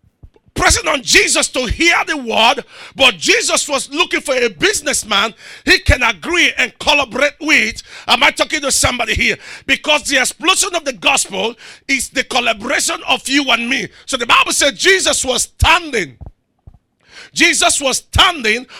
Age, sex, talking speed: 50-69, male, 155 wpm